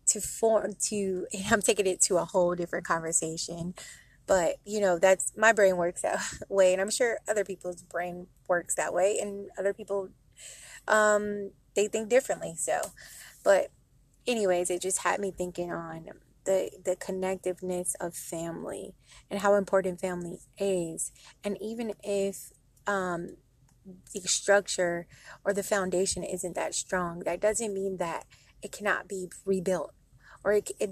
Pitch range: 180-210 Hz